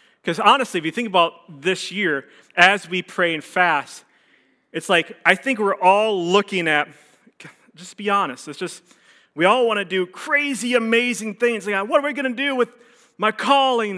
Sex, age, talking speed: male, 30-49, 185 wpm